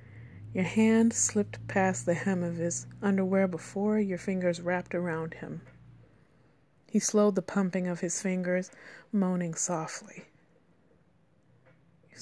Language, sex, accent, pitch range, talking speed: English, female, American, 170-200 Hz, 125 wpm